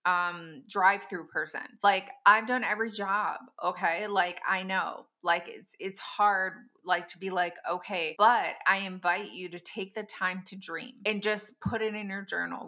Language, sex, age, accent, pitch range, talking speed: English, female, 20-39, American, 175-220 Hz, 180 wpm